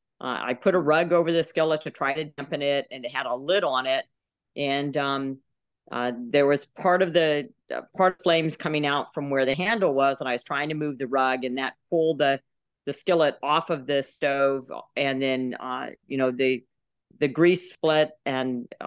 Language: English